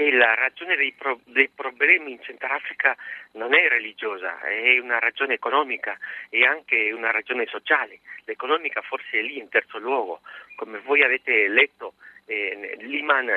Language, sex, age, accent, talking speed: Italian, male, 40-59, native, 145 wpm